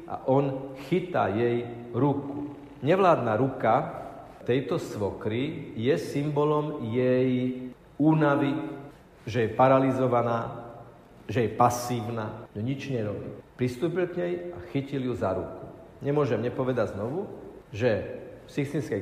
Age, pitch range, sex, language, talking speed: 50-69, 115-140 Hz, male, Slovak, 115 wpm